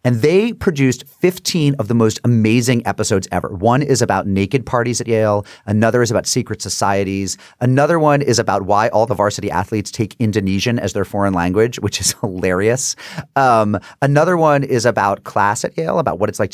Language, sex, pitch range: English, male, 95-125 Hz